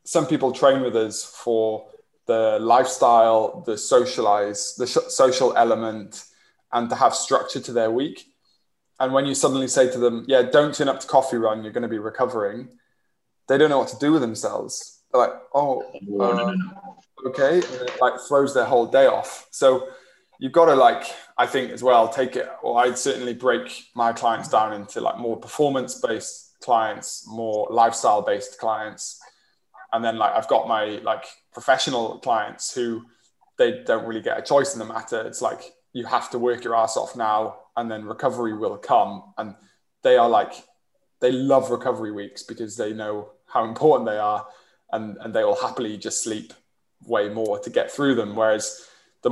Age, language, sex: 20-39, English, male